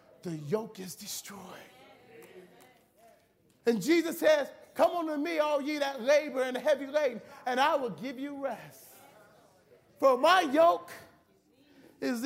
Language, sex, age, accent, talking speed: English, male, 30-49, American, 130 wpm